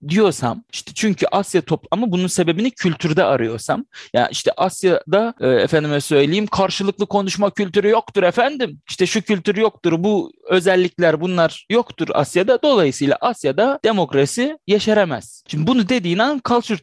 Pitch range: 150-220 Hz